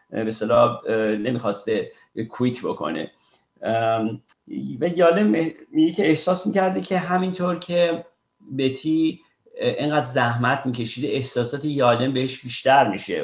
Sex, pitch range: male, 120-145 Hz